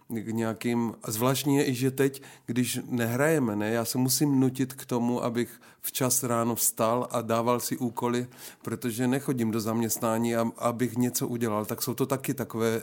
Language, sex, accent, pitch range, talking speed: Czech, male, native, 115-125 Hz, 165 wpm